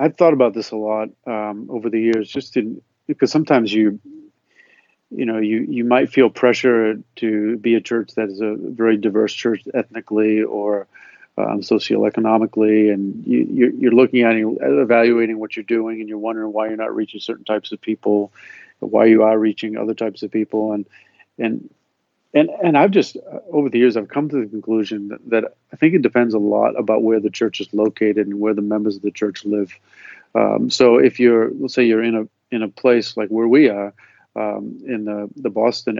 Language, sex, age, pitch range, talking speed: English, male, 40-59, 105-115 Hz, 200 wpm